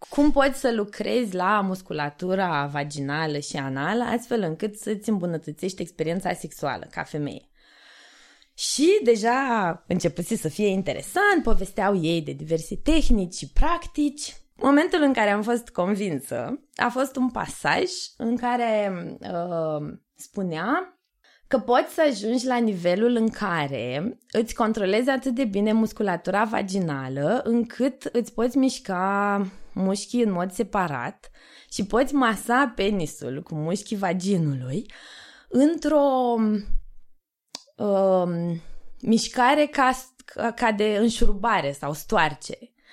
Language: Romanian